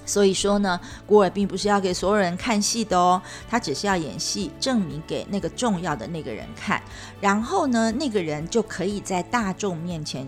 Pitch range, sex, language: 165-220 Hz, female, Chinese